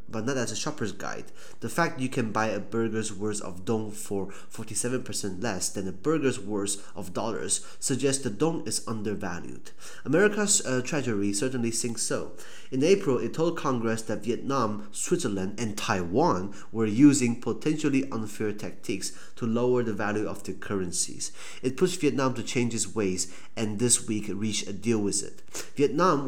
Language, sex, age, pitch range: Chinese, male, 30-49, 100-130 Hz